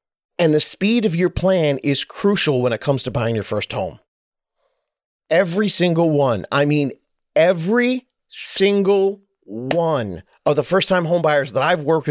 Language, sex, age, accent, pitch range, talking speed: English, male, 40-59, American, 130-175 Hz, 160 wpm